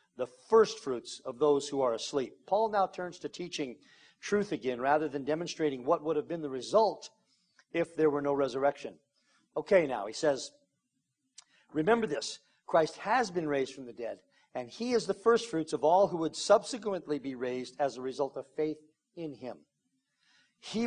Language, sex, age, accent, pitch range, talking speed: English, male, 50-69, American, 145-195 Hz, 175 wpm